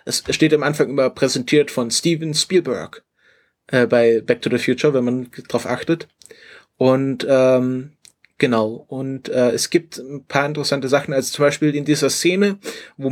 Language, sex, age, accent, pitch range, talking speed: German, male, 30-49, German, 125-150 Hz, 170 wpm